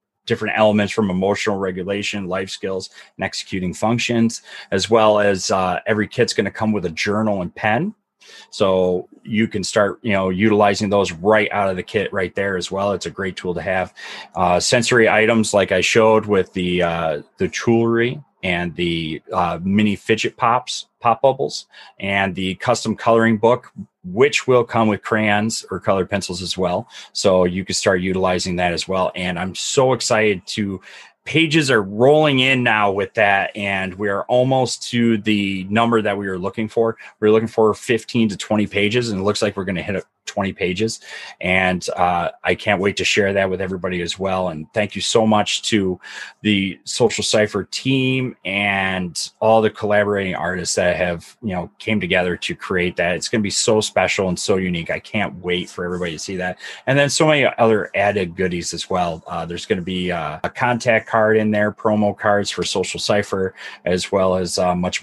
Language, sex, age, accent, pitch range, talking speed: English, male, 30-49, American, 95-110 Hz, 200 wpm